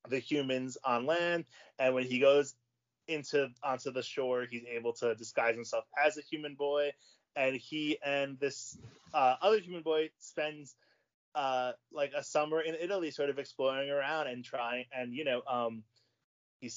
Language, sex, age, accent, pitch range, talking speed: English, male, 20-39, American, 125-170 Hz, 170 wpm